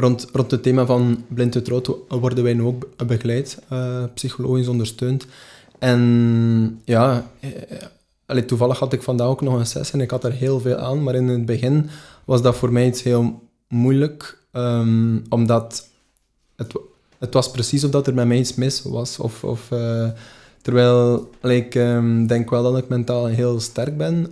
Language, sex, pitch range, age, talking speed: Dutch, male, 115-130 Hz, 20-39, 170 wpm